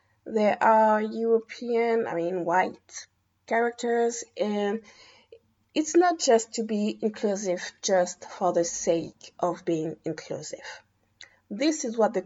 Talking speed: 120 wpm